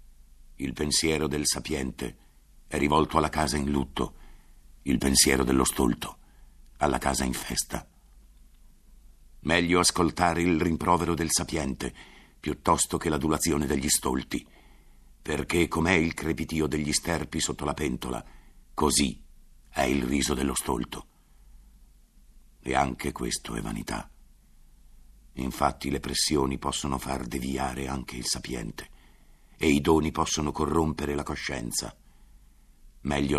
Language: Italian